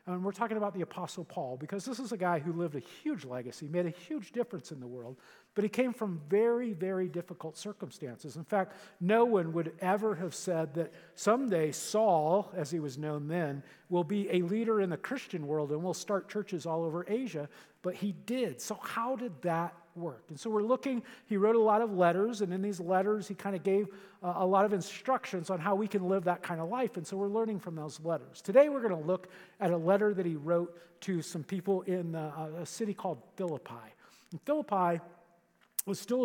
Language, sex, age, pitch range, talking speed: English, male, 50-69, 160-205 Hz, 220 wpm